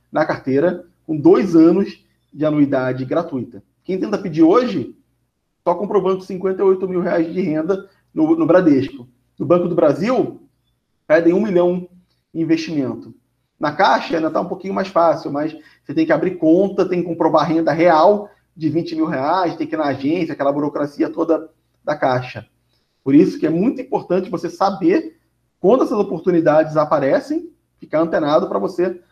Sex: male